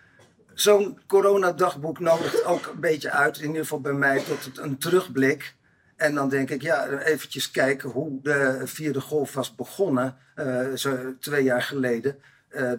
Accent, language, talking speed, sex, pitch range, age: Dutch, Dutch, 155 wpm, male, 135-170 Hz, 50-69